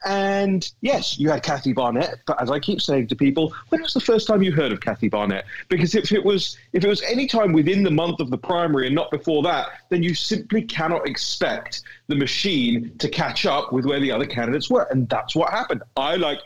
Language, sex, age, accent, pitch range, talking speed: English, male, 30-49, British, 125-170 Hz, 235 wpm